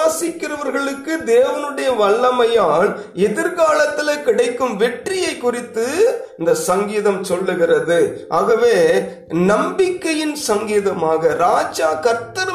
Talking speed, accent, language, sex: 70 wpm, native, Tamil, male